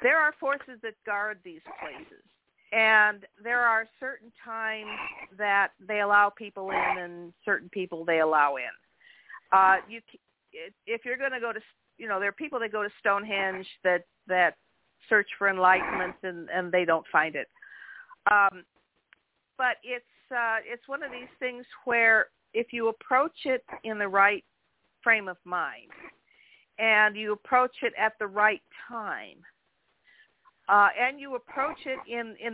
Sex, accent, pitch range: female, American, 190-240 Hz